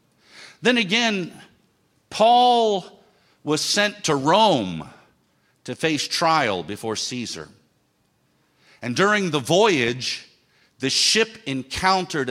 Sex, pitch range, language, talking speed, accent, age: male, 130-190 Hz, English, 95 wpm, American, 50-69